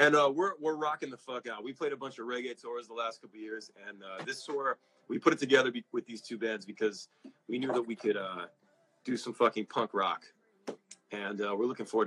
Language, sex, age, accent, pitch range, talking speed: English, male, 30-49, American, 105-130 Hz, 245 wpm